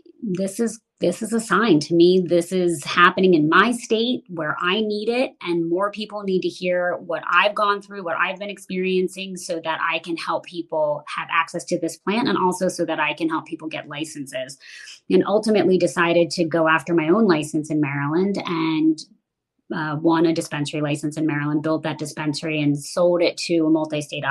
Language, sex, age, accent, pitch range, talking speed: English, female, 30-49, American, 150-185 Hz, 200 wpm